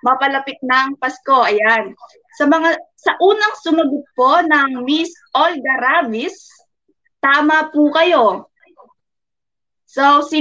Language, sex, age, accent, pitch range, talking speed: Filipino, female, 20-39, native, 255-315 Hz, 110 wpm